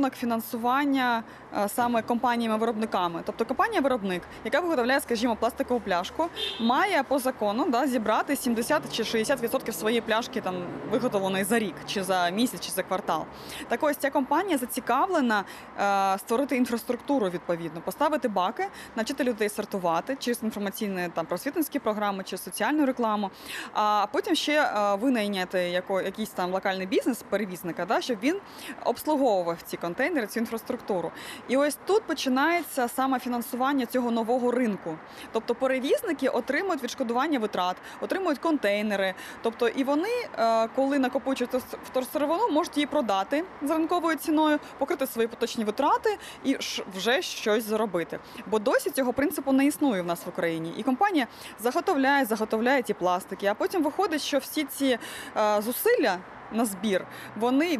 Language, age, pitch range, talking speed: Ukrainian, 20-39, 210-285 Hz, 135 wpm